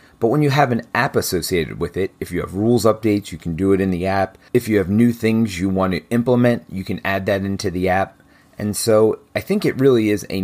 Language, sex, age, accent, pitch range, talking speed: English, male, 30-49, American, 90-120 Hz, 260 wpm